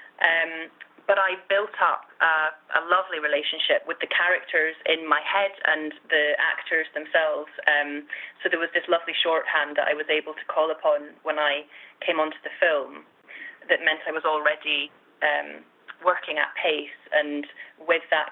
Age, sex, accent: 20-39, female, British